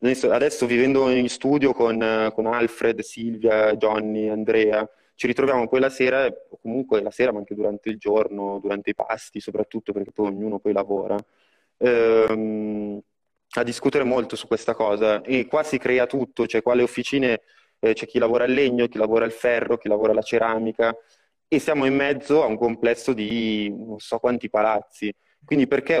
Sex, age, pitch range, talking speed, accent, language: male, 20-39, 105-120 Hz, 180 wpm, native, Italian